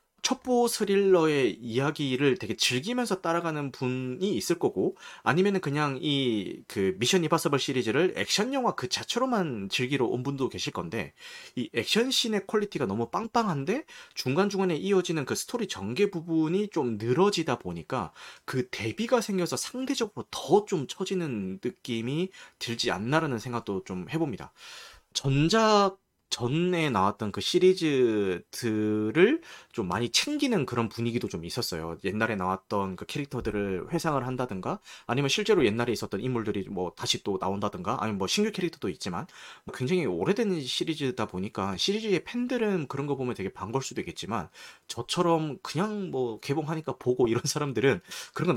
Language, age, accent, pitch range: Korean, 30-49, native, 120-190 Hz